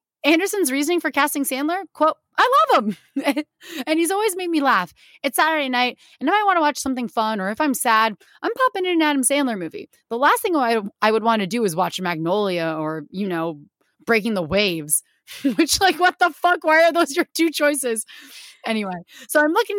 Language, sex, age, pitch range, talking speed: English, female, 30-49, 200-310 Hz, 210 wpm